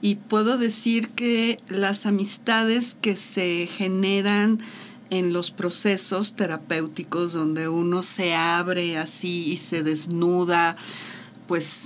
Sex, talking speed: female, 110 wpm